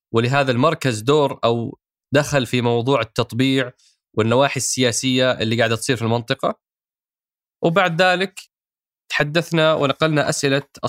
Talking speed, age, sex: 110 wpm, 20-39, male